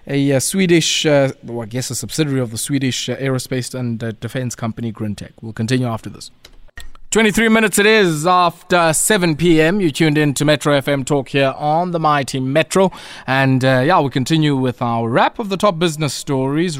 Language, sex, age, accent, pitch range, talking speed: English, male, 20-39, South African, 125-165 Hz, 195 wpm